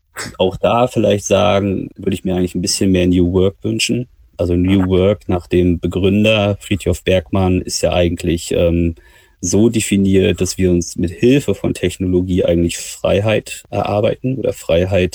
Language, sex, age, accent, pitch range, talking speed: German, male, 30-49, German, 85-95 Hz, 160 wpm